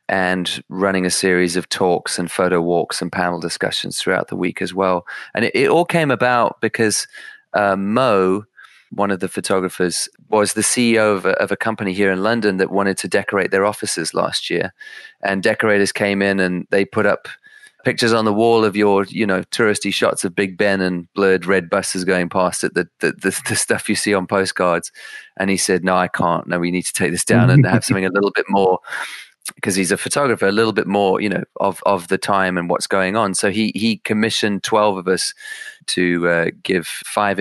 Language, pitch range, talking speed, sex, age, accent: English, 95-110 Hz, 215 wpm, male, 30-49, British